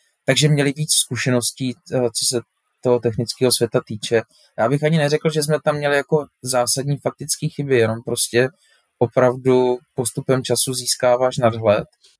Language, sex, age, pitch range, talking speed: Czech, male, 20-39, 115-130 Hz, 145 wpm